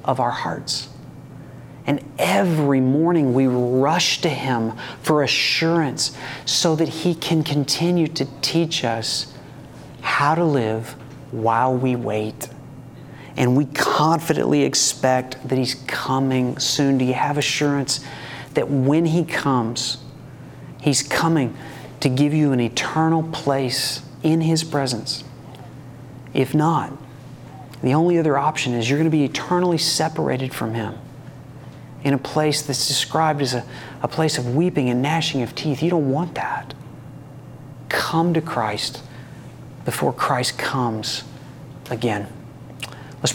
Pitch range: 130-150 Hz